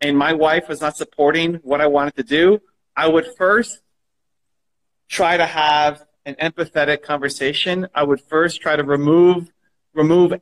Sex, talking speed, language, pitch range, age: male, 155 wpm, Telugu, 140-175 Hz, 40-59